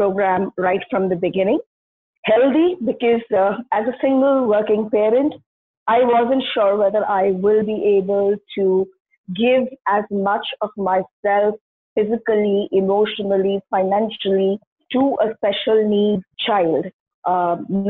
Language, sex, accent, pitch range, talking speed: English, female, Indian, 190-230 Hz, 120 wpm